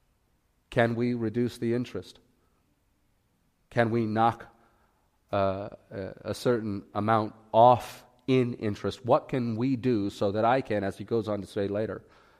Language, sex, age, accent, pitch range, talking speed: English, male, 40-59, American, 100-120 Hz, 145 wpm